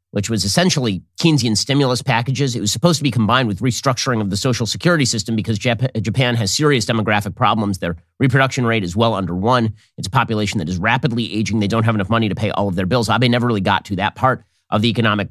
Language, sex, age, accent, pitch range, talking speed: English, male, 40-59, American, 100-130 Hz, 235 wpm